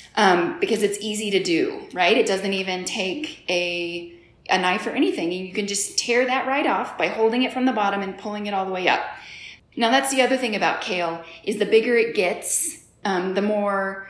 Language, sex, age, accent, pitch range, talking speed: English, female, 30-49, American, 195-270 Hz, 220 wpm